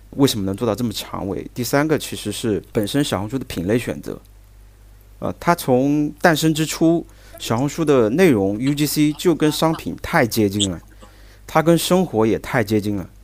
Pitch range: 100-150 Hz